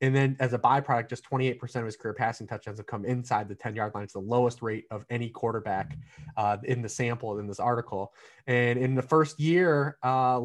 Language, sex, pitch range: English, male, 110-140 Hz